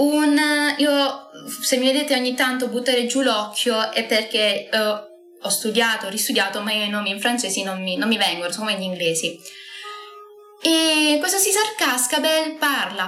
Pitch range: 200-265 Hz